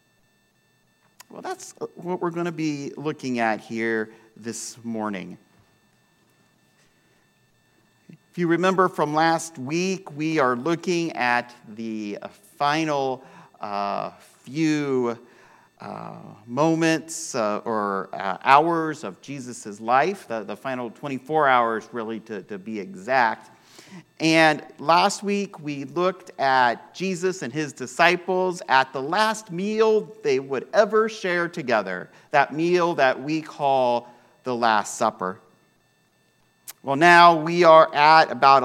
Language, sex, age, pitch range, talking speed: English, male, 50-69, 125-175 Hz, 120 wpm